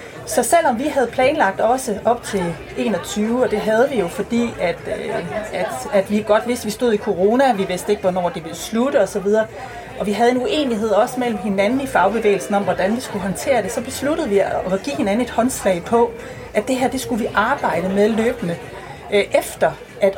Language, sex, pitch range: Danish, female, 190-240 Hz